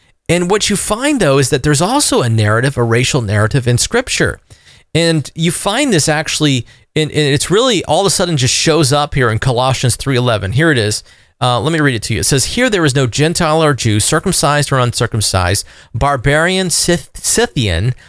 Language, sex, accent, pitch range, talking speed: English, male, American, 110-165 Hz, 190 wpm